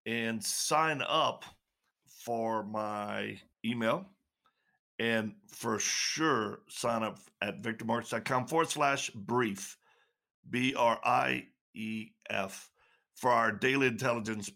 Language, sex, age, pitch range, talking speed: English, male, 50-69, 105-125 Hz, 110 wpm